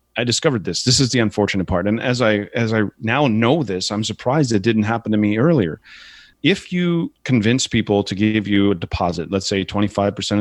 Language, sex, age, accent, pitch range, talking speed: English, male, 30-49, American, 105-130 Hz, 210 wpm